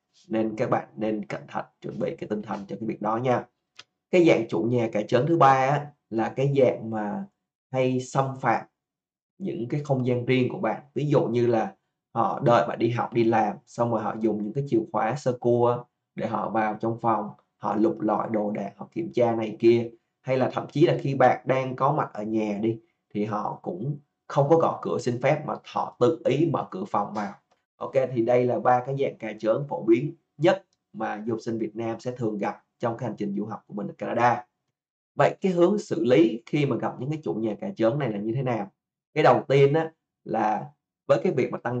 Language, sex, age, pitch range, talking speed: Vietnamese, male, 20-39, 115-135 Hz, 235 wpm